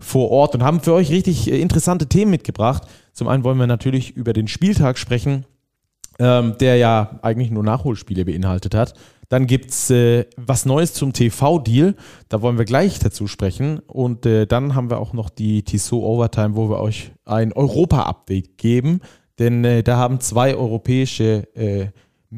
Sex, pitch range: male, 110-135 Hz